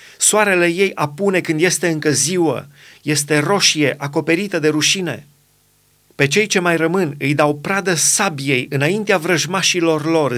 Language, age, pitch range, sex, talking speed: Romanian, 30-49, 145-180 Hz, male, 140 wpm